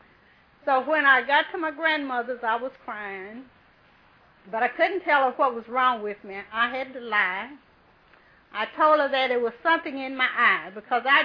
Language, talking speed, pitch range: English, 190 wpm, 220-270 Hz